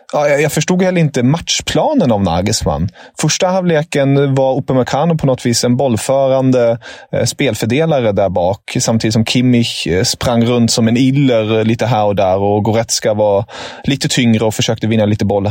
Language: English